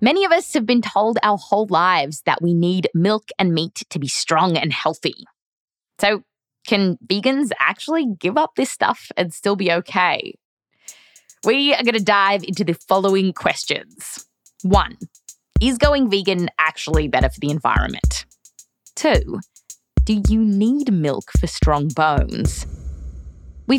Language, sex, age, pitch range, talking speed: English, female, 20-39, 160-220 Hz, 145 wpm